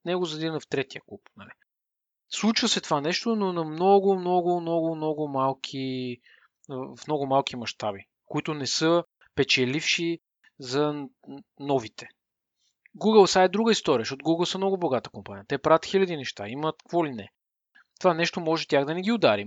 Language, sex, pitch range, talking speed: Bulgarian, male, 130-175 Hz, 155 wpm